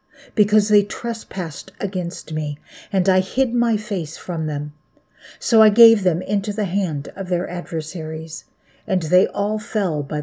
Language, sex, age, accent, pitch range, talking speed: English, female, 50-69, American, 160-200 Hz, 160 wpm